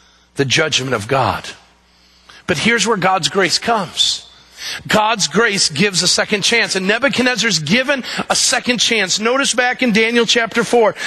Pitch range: 205-260 Hz